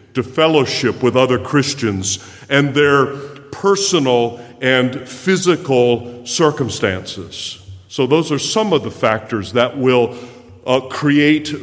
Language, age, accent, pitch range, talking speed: English, 50-69, American, 110-140 Hz, 115 wpm